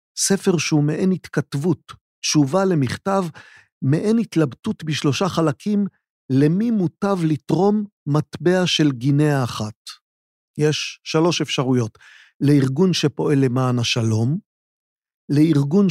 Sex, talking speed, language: male, 95 wpm, Hebrew